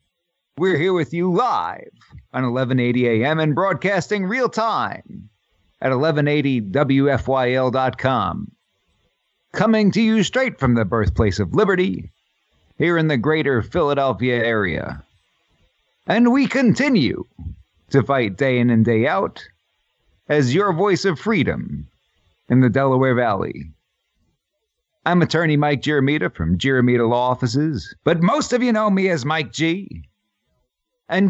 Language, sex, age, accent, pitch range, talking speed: English, male, 50-69, American, 125-190 Hz, 125 wpm